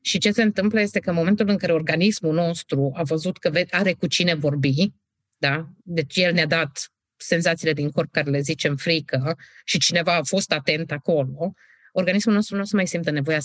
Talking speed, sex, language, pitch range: 200 wpm, female, Romanian, 145-200 Hz